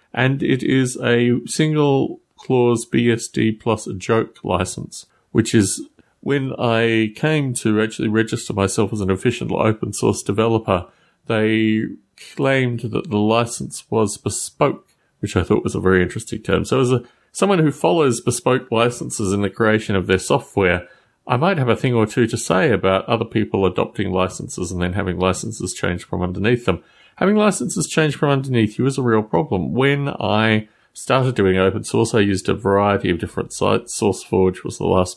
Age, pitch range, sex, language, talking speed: 30-49, 95-120 Hz, male, English, 170 wpm